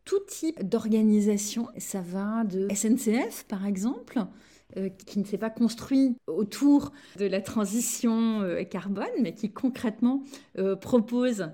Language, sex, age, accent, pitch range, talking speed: French, female, 30-49, French, 190-230 Hz, 135 wpm